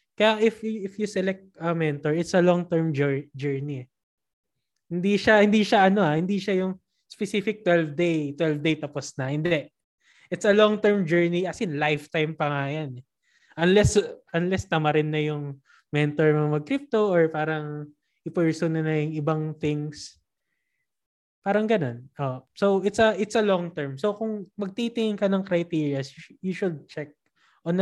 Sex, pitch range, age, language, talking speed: male, 150-190 Hz, 20-39, Filipino, 165 wpm